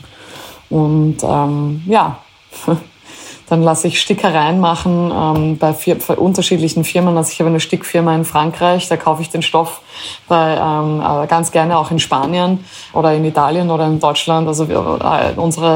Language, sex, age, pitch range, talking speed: German, female, 20-39, 155-175 Hz, 150 wpm